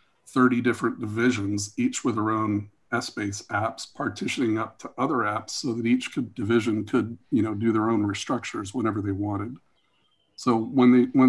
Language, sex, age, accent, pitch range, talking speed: English, male, 40-59, American, 105-125 Hz, 170 wpm